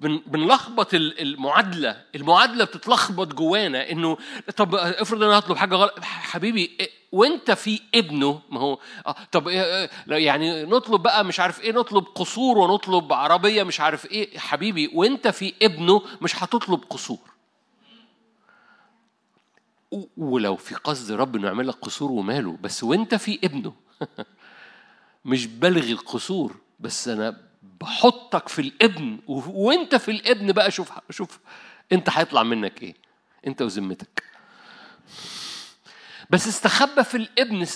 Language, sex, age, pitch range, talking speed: Arabic, male, 50-69, 165-225 Hz, 120 wpm